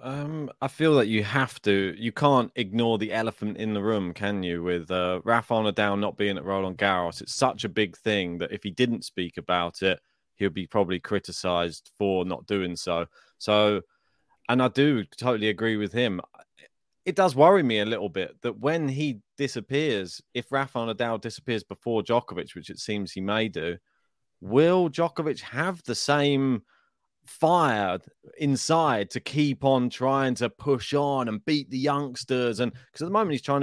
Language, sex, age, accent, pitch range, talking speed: English, male, 30-49, British, 100-130 Hz, 180 wpm